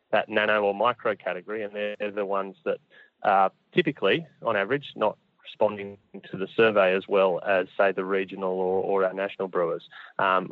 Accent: Australian